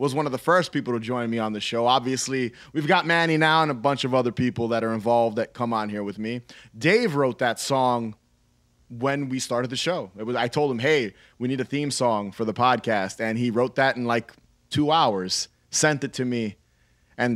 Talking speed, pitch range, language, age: 235 wpm, 115-150 Hz, English, 30-49